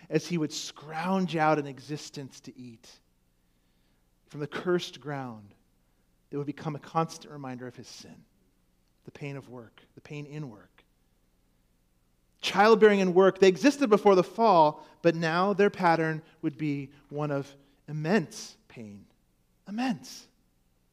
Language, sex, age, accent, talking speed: English, male, 40-59, American, 140 wpm